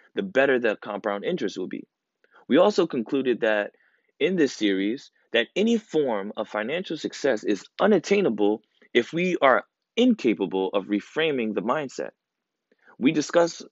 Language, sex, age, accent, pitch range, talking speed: English, male, 20-39, American, 100-135 Hz, 140 wpm